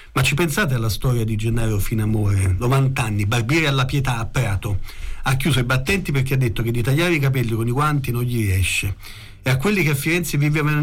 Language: Italian